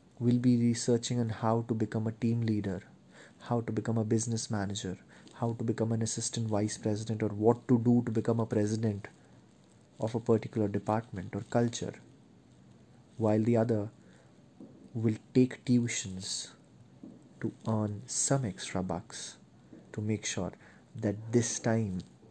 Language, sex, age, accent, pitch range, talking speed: Hindi, male, 30-49, native, 105-120 Hz, 145 wpm